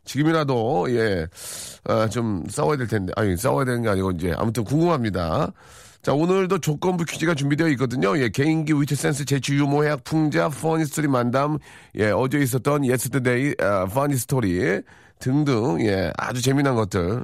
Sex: male